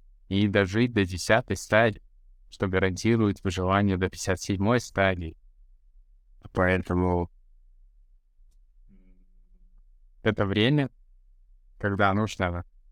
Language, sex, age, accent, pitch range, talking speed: Russian, male, 20-39, native, 90-110 Hz, 75 wpm